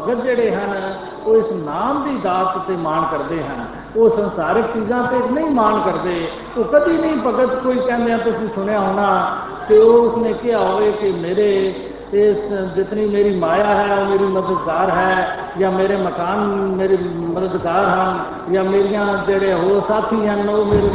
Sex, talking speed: male, 165 wpm